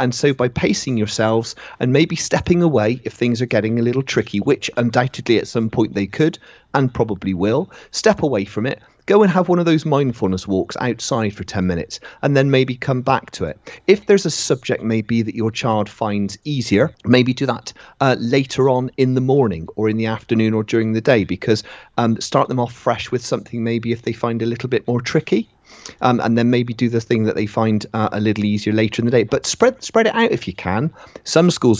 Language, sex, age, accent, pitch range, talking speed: English, male, 40-59, British, 105-130 Hz, 230 wpm